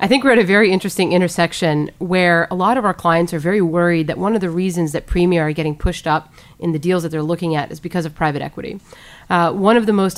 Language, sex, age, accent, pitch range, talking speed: English, female, 30-49, American, 160-185 Hz, 265 wpm